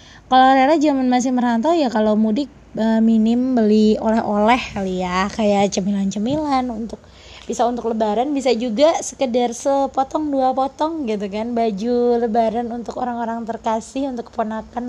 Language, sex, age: Indonesian, female, 20-39